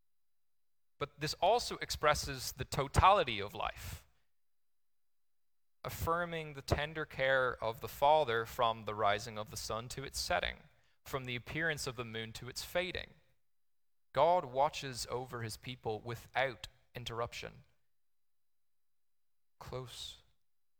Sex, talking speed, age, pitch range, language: male, 120 wpm, 20-39, 110-135 Hz, English